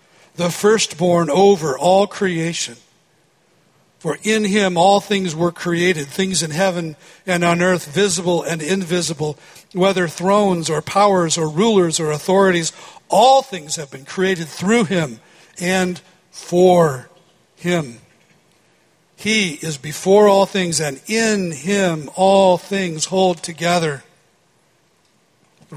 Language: English